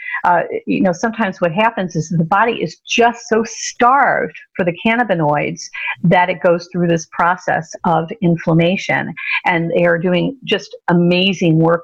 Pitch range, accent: 170-230 Hz, American